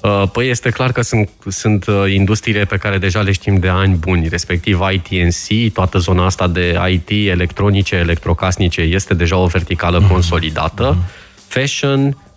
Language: Romanian